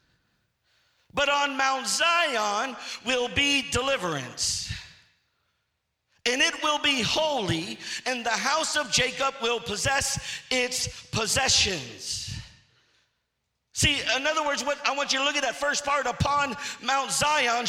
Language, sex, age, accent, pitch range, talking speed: English, male, 50-69, American, 240-285 Hz, 130 wpm